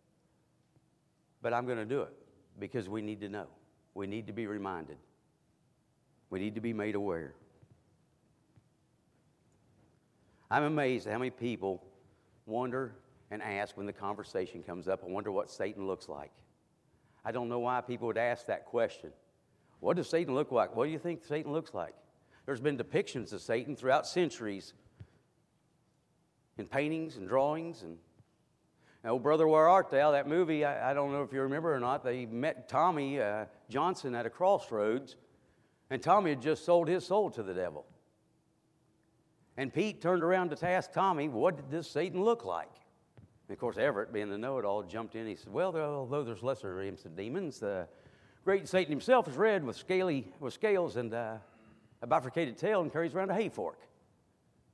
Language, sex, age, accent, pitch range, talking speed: English, male, 50-69, American, 110-160 Hz, 180 wpm